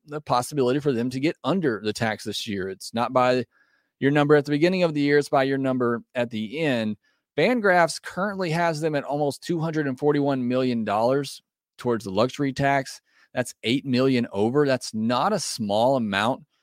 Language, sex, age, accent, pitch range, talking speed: English, male, 30-49, American, 115-145 Hz, 180 wpm